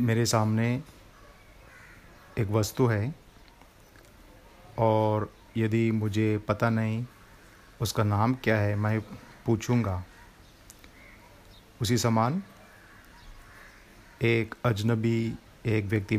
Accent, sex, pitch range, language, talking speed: native, male, 105-120 Hz, Hindi, 80 wpm